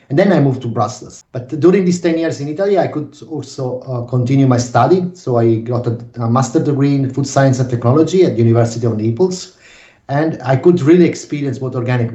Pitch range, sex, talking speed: 120-150 Hz, male, 215 wpm